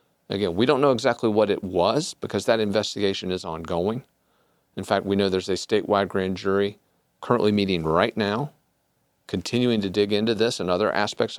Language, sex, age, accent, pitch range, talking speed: English, male, 40-59, American, 95-115 Hz, 180 wpm